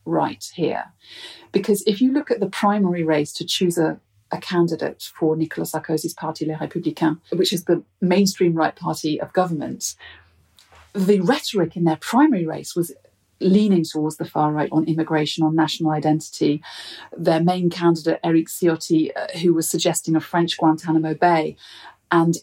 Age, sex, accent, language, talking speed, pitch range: 40-59, female, British, English, 160 wpm, 155-185 Hz